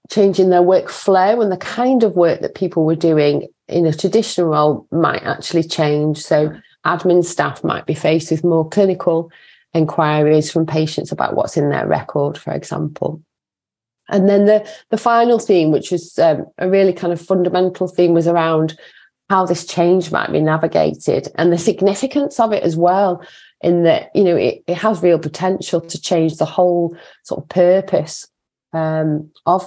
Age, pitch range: 30-49, 165-190 Hz